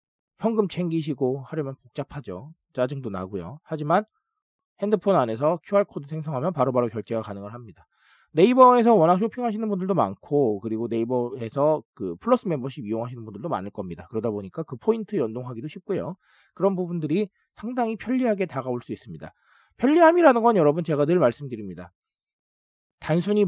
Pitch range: 130-210 Hz